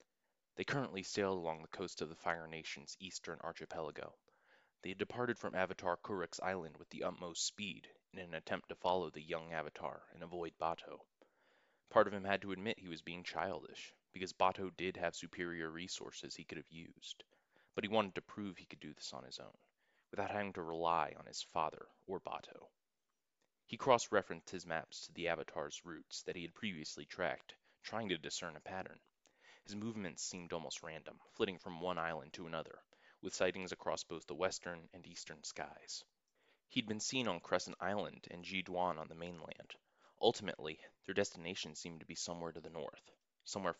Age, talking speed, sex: 20-39, 185 wpm, male